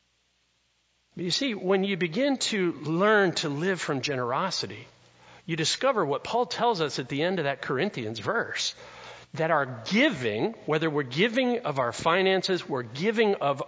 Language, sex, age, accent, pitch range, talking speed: English, male, 50-69, American, 145-205 Hz, 160 wpm